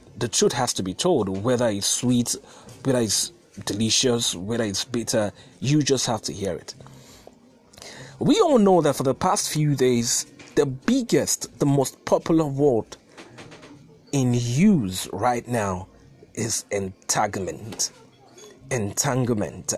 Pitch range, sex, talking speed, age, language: 105-145 Hz, male, 130 wpm, 30-49, English